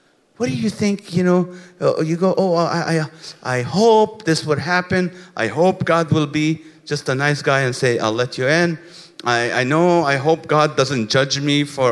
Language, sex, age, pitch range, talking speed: English, male, 50-69, 125-170 Hz, 205 wpm